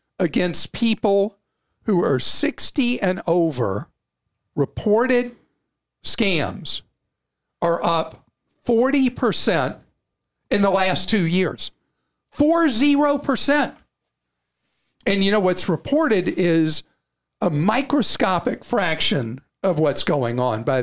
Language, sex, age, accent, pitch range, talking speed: English, male, 50-69, American, 145-200 Hz, 100 wpm